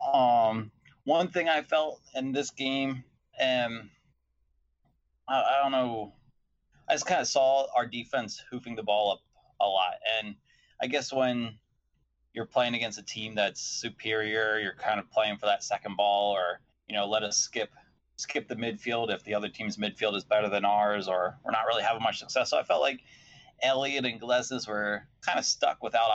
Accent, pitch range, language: American, 100-120 Hz, English